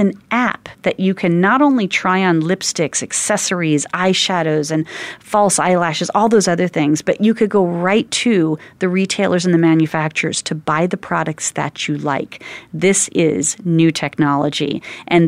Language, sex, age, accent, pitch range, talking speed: English, female, 40-59, American, 160-205 Hz, 165 wpm